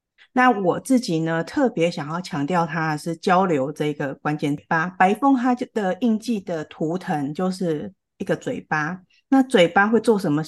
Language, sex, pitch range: Chinese, female, 155-200 Hz